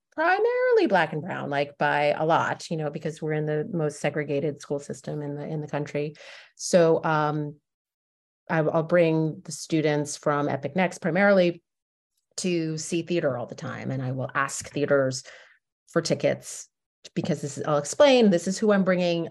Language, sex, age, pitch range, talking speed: English, female, 30-49, 155-190 Hz, 175 wpm